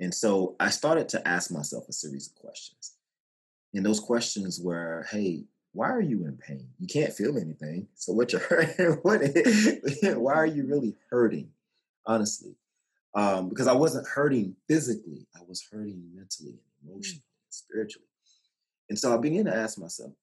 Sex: male